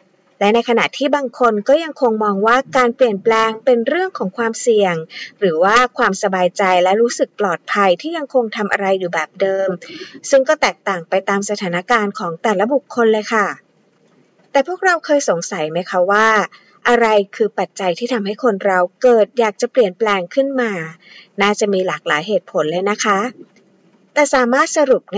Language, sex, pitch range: Thai, female, 195-255 Hz